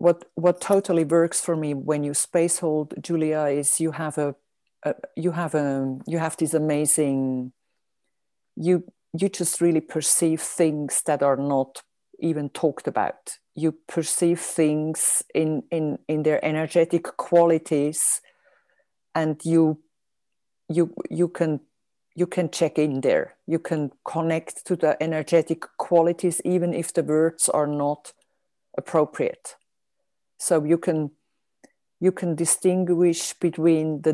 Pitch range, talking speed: 150-170 Hz, 135 wpm